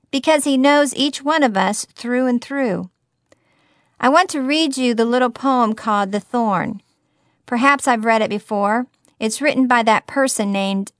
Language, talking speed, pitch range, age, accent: English, 175 wpm, 210-265 Hz, 50-69, American